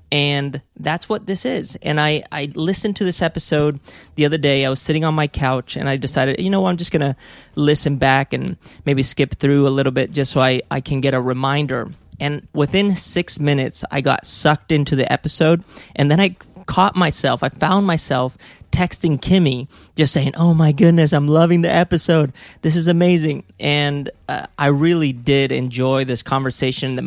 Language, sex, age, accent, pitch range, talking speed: English, male, 30-49, American, 130-160 Hz, 195 wpm